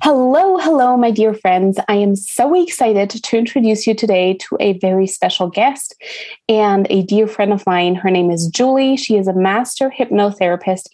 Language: English